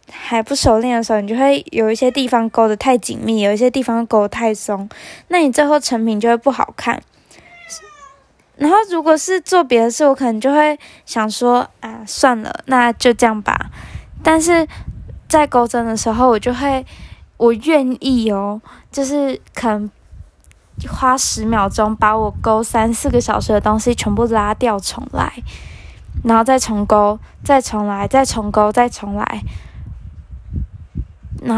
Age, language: 10-29, Chinese